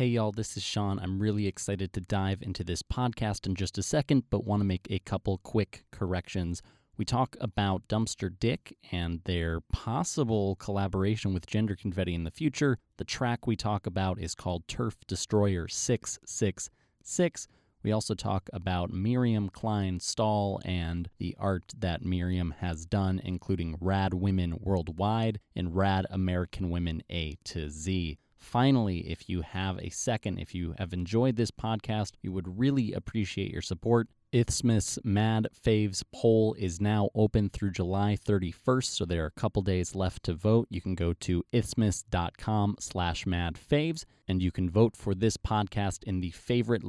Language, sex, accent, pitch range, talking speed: English, male, American, 90-110 Hz, 165 wpm